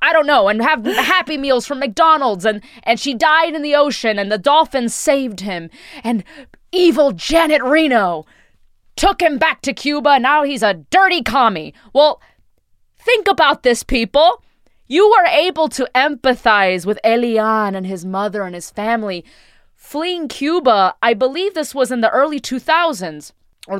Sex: female